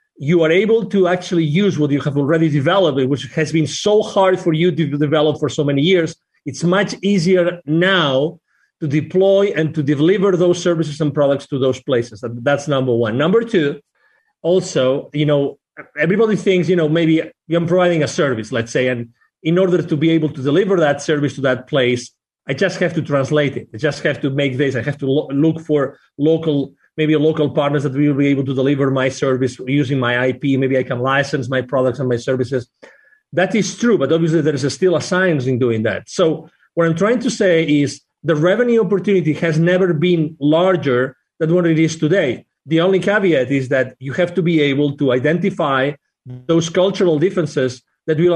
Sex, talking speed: male, 205 wpm